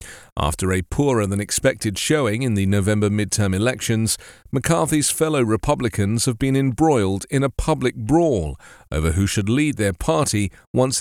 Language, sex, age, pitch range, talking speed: English, male, 40-59, 100-140 Hz, 140 wpm